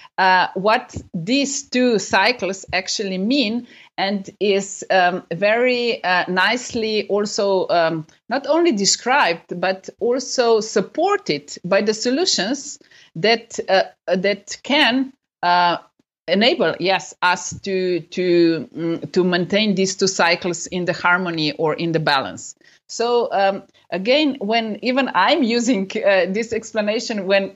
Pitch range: 185-245 Hz